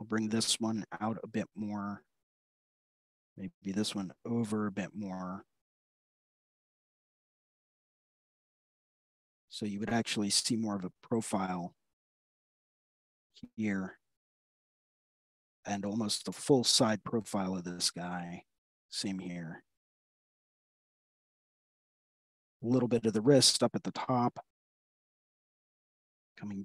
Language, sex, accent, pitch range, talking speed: English, male, American, 95-120 Hz, 105 wpm